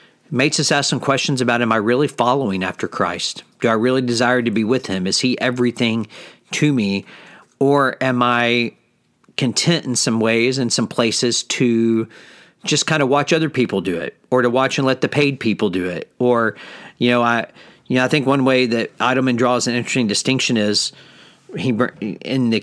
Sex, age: male, 50-69